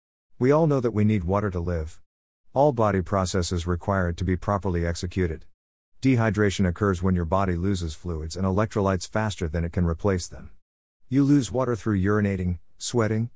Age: 50-69